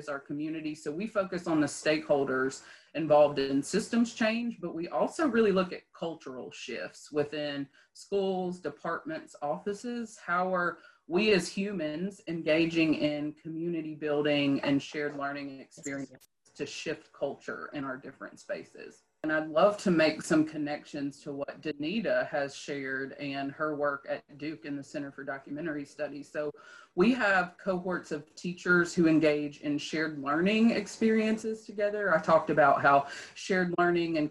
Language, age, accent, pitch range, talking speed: English, 30-49, American, 145-180 Hz, 150 wpm